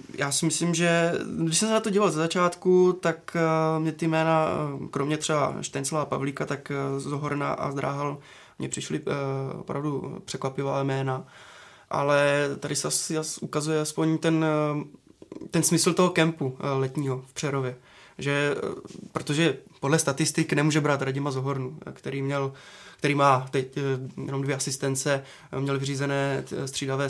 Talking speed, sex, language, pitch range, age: 135 wpm, male, Czech, 135-160 Hz, 20-39